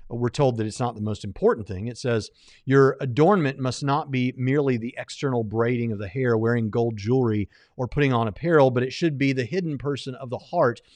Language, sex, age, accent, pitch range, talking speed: English, male, 50-69, American, 115-150 Hz, 220 wpm